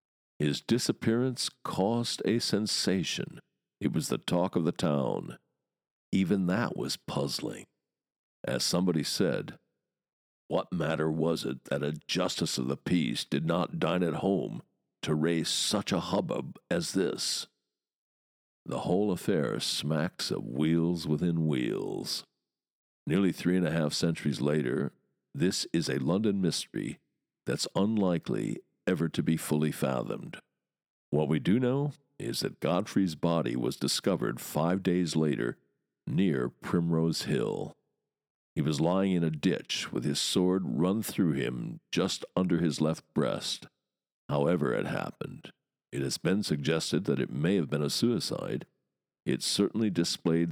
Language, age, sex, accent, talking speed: English, 60-79, male, American, 140 wpm